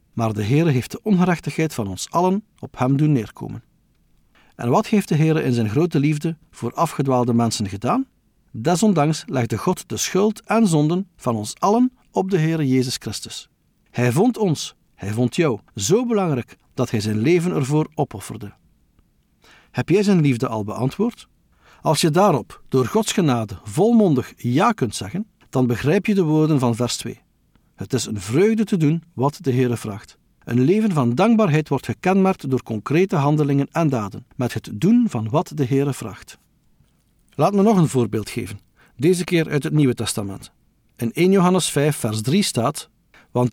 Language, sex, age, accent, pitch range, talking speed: Dutch, male, 50-69, Dutch, 120-175 Hz, 175 wpm